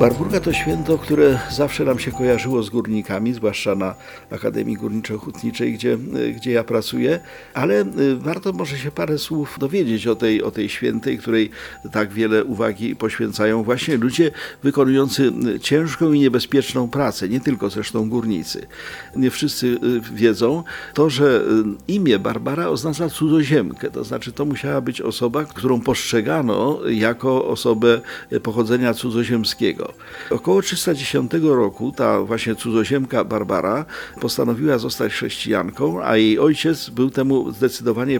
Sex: male